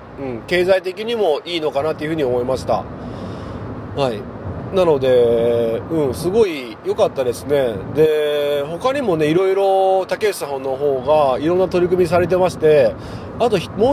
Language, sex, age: Japanese, male, 40-59